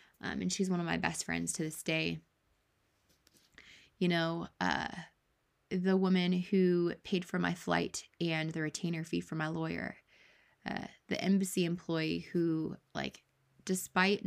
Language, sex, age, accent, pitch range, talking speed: English, female, 20-39, American, 160-185 Hz, 145 wpm